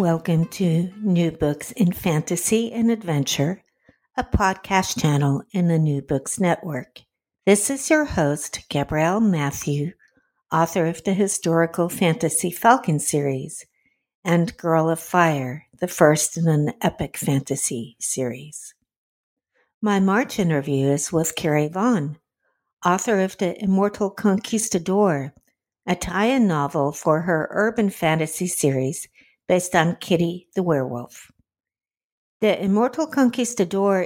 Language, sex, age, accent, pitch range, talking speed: English, female, 60-79, American, 155-200 Hz, 120 wpm